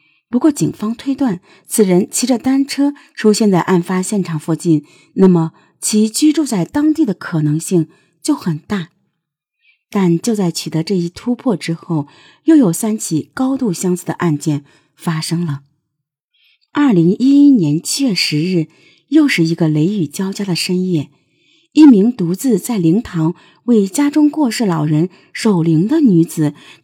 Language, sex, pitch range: Chinese, female, 165-235 Hz